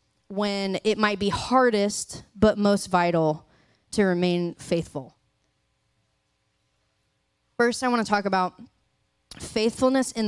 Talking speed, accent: 110 wpm, American